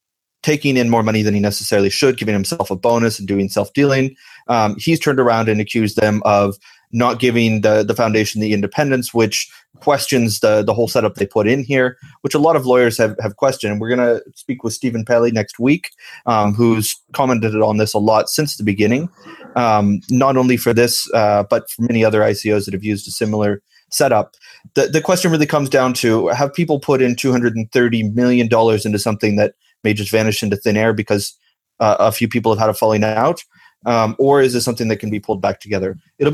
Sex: male